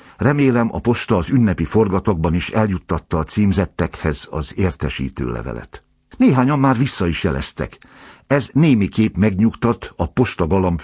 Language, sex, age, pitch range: Hungarian, male, 60-79, 80-110 Hz